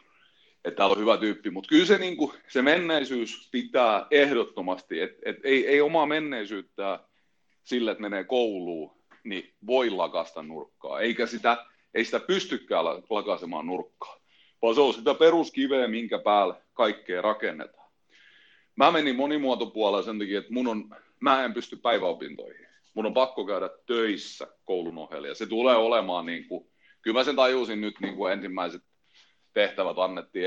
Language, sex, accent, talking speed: Finnish, male, native, 150 wpm